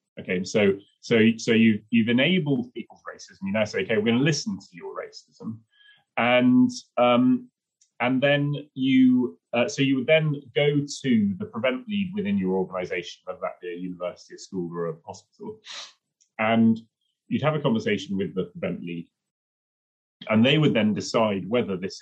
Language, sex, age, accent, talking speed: English, male, 30-49, British, 175 wpm